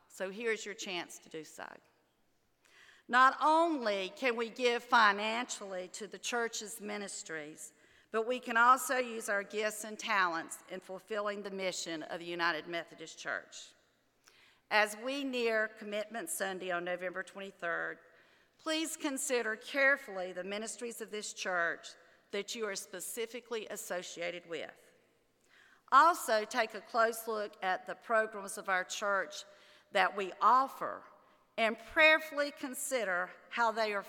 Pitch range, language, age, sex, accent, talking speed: 180-230 Hz, English, 50-69, female, American, 135 wpm